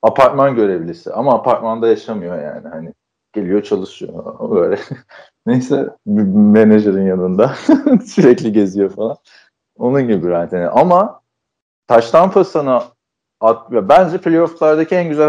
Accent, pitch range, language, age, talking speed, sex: native, 110-150 Hz, Turkish, 40-59, 120 wpm, male